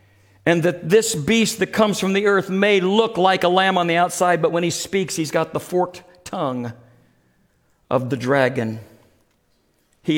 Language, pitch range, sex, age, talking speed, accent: English, 145-215 Hz, male, 50-69, 175 wpm, American